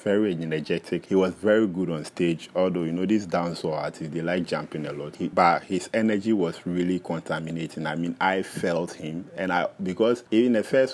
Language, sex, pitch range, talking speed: English, male, 80-95 Hz, 205 wpm